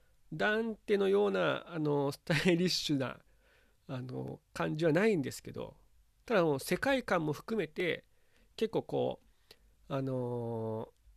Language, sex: Japanese, male